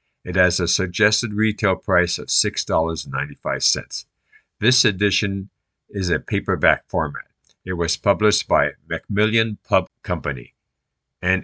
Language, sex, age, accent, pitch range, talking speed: English, male, 50-69, American, 90-110 Hz, 115 wpm